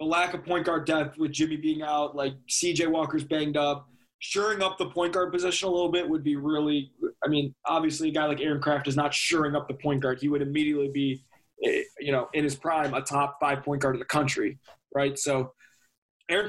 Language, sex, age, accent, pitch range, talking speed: English, male, 20-39, American, 145-180 Hz, 230 wpm